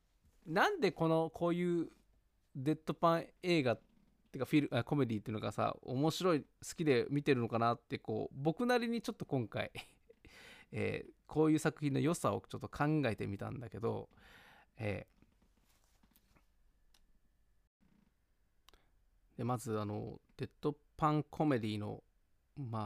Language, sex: Japanese, male